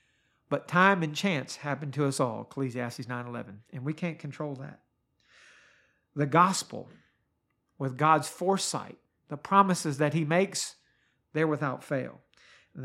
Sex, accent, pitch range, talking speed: male, American, 135-180 Hz, 135 wpm